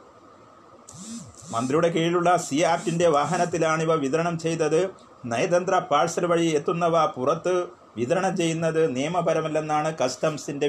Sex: male